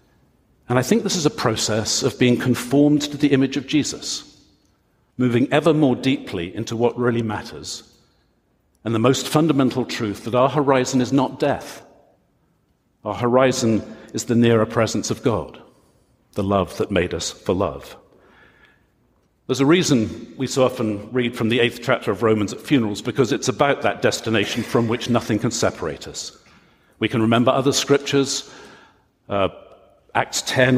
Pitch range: 115-130 Hz